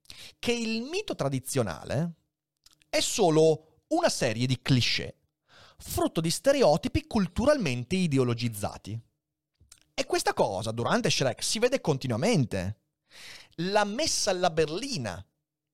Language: Italian